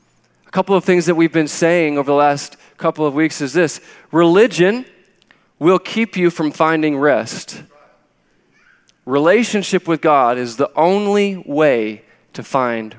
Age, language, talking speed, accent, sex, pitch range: 20-39, English, 145 wpm, American, male, 145-175 Hz